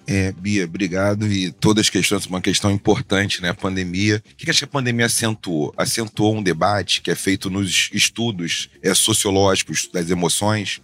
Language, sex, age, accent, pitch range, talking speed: Portuguese, male, 40-59, Brazilian, 95-115 Hz, 185 wpm